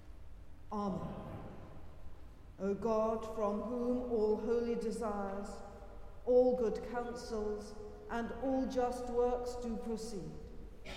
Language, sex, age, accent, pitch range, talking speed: English, female, 50-69, British, 180-235 Hz, 95 wpm